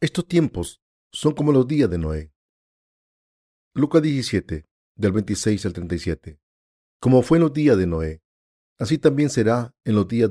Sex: male